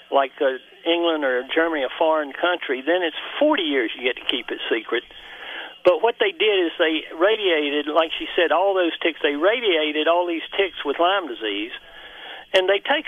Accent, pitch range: American, 160-220 Hz